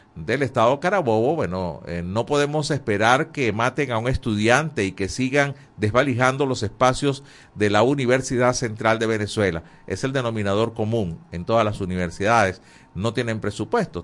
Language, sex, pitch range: Spanish, male, 95-125 Hz